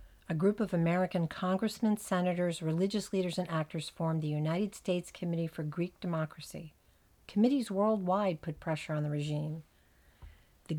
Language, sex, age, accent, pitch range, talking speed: English, female, 50-69, American, 160-195 Hz, 145 wpm